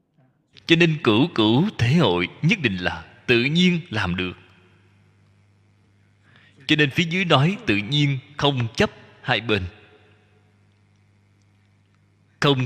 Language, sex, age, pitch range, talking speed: Vietnamese, male, 20-39, 105-160 Hz, 120 wpm